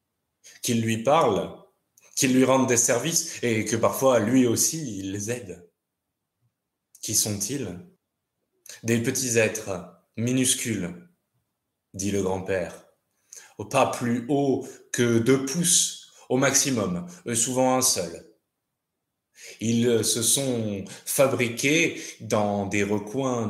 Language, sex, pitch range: French, male, 95-120 Hz